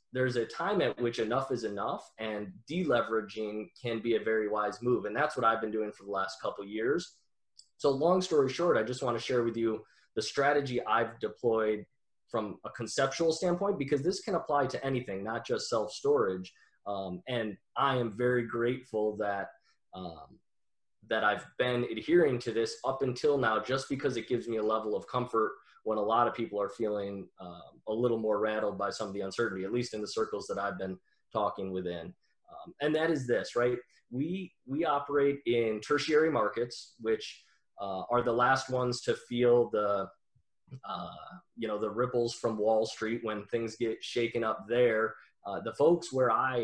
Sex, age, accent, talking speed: male, 20-39, American, 190 wpm